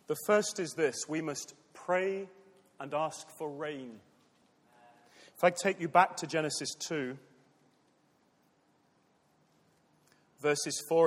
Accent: British